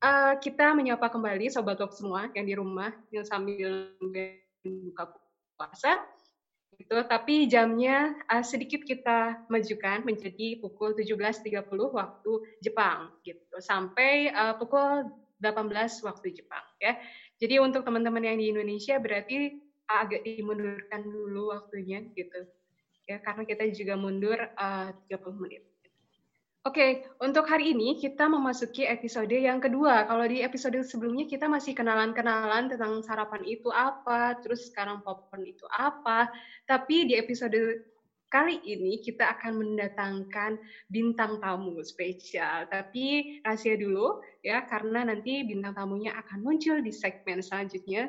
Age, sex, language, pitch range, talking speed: 20-39, female, Indonesian, 200-265 Hz, 130 wpm